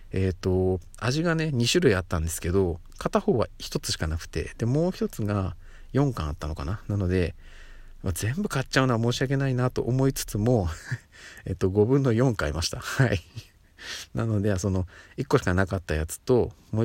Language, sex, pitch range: Japanese, male, 85-105 Hz